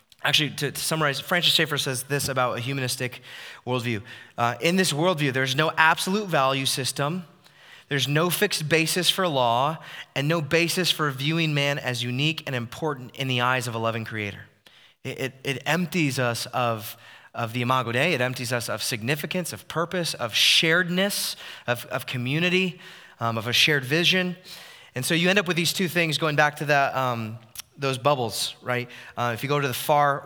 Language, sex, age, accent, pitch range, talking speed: English, male, 20-39, American, 125-160 Hz, 190 wpm